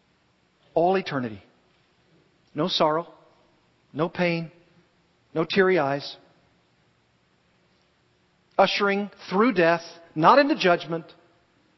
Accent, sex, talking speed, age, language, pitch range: American, male, 75 wpm, 50-69, English, 135-190 Hz